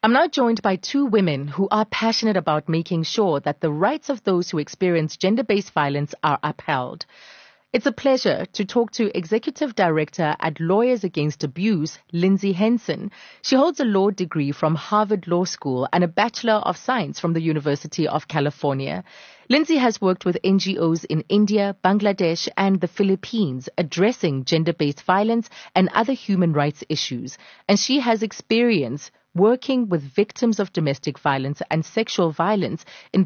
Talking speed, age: 160 wpm, 30-49